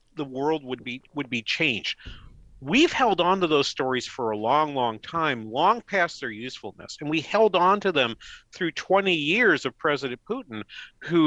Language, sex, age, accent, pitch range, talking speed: English, male, 50-69, American, 125-180 Hz, 185 wpm